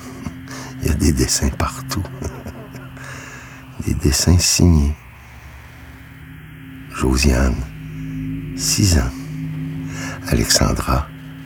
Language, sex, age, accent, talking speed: French, male, 60-79, French, 50 wpm